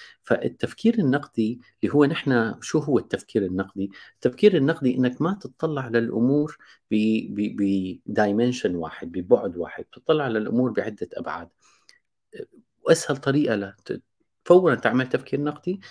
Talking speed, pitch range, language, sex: 110 wpm, 110-150 Hz, Arabic, male